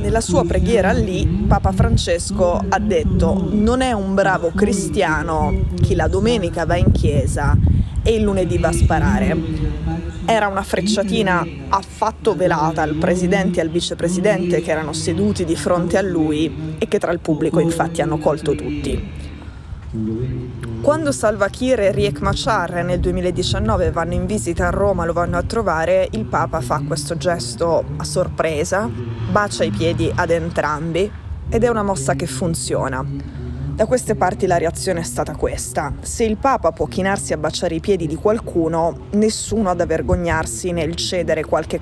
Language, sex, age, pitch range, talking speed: Italian, female, 20-39, 165-210 Hz, 160 wpm